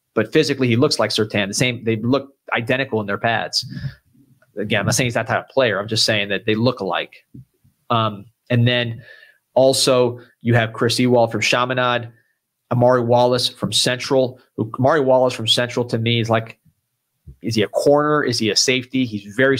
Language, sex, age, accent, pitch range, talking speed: English, male, 30-49, American, 110-125 Hz, 195 wpm